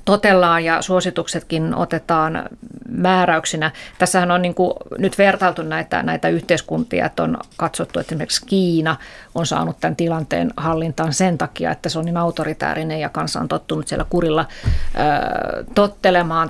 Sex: female